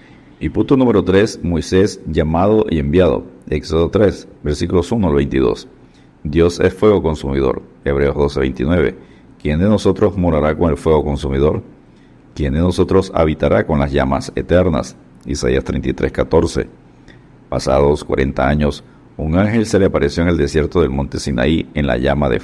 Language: Spanish